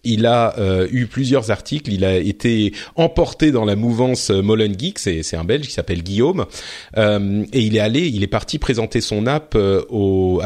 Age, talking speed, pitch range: 30-49, 190 wpm, 95-130 Hz